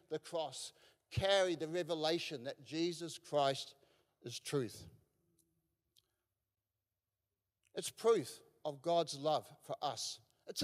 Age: 60-79